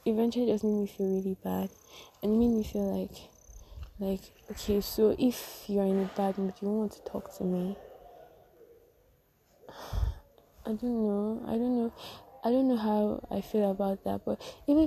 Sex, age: female, 20-39